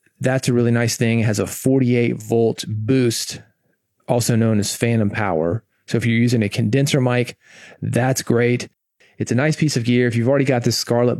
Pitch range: 110-130 Hz